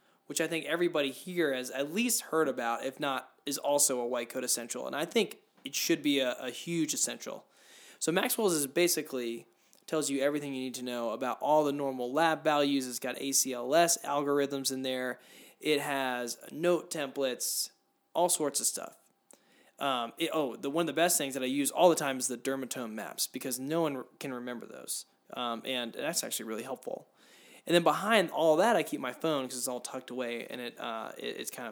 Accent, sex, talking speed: American, male, 210 wpm